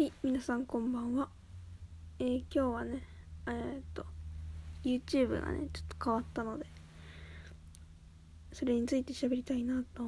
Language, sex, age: Japanese, female, 20-39